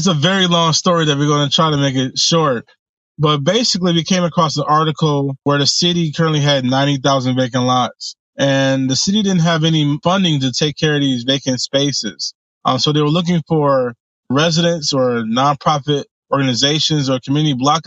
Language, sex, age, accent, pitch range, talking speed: English, male, 20-39, American, 130-155 Hz, 190 wpm